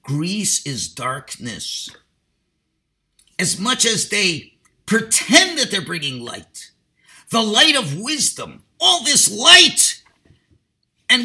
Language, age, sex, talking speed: English, 50-69, male, 105 wpm